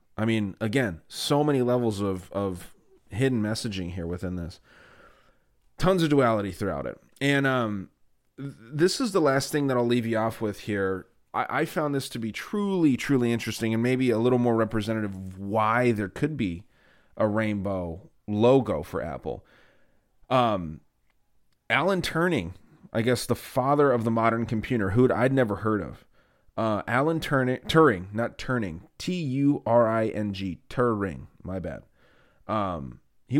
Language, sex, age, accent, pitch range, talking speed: English, male, 30-49, American, 105-135 Hz, 155 wpm